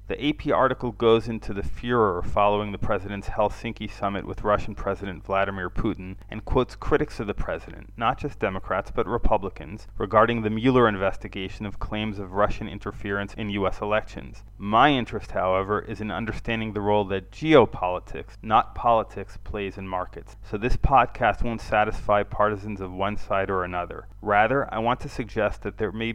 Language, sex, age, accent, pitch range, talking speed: English, male, 30-49, American, 100-115 Hz, 170 wpm